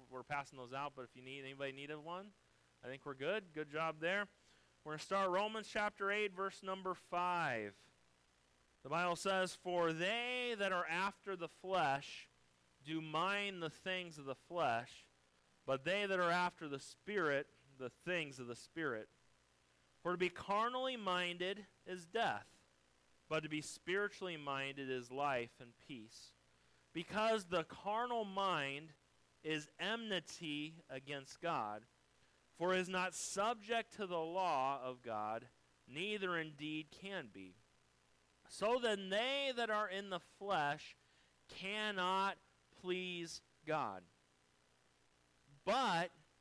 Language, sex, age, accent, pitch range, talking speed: English, male, 30-49, American, 130-195 Hz, 135 wpm